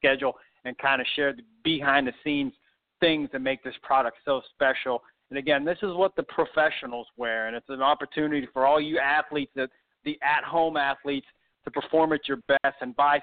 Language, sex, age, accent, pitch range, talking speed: English, male, 40-59, American, 125-150 Hz, 185 wpm